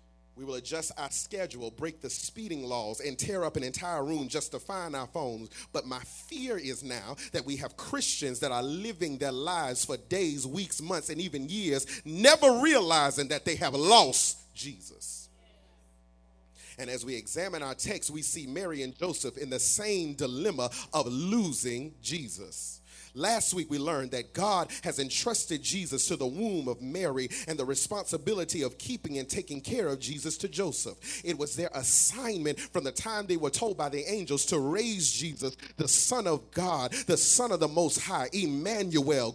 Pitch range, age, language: 130-190 Hz, 30-49, English